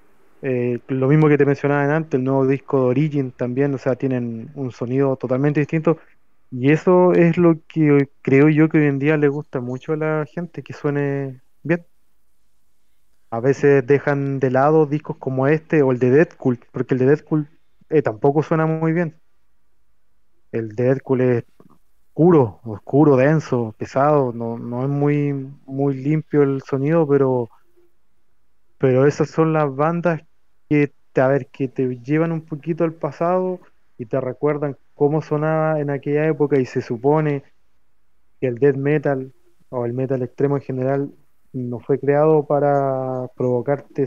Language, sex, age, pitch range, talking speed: Spanish, male, 20-39, 130-150 Hz, 165 wpm